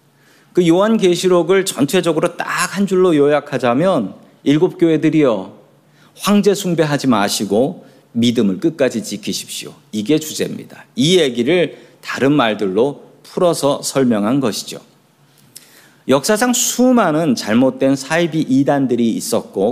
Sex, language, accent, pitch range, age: male, Korean, native, 130-190 Hz, 40-59